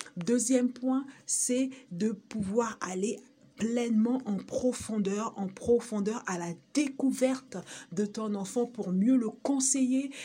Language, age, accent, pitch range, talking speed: French, 50-69, French, 180-225 Hz, 125 wpm